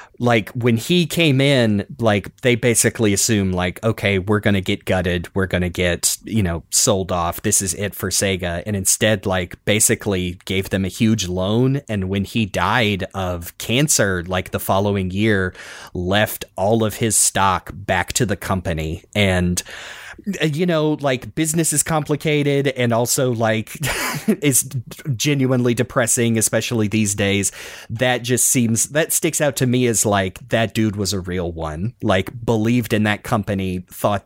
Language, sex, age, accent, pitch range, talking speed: English, male, 30-49, American, 95-125 Hz, 165 wpm